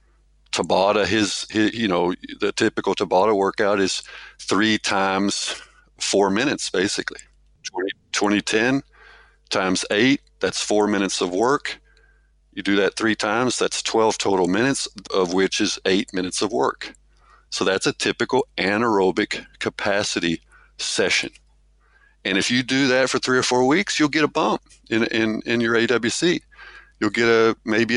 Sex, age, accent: male, 50-69, American